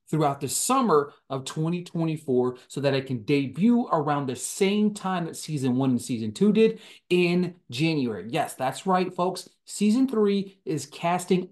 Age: 30-49